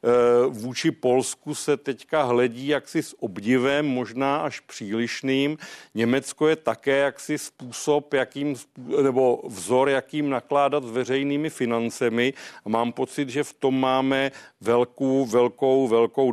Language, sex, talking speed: Czech, male, 120 wpm